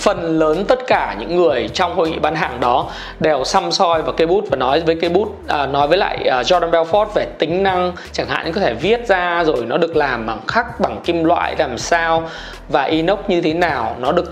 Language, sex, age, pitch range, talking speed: Vietnamese, male, 20-39, 165-240 Hz, 240 wpm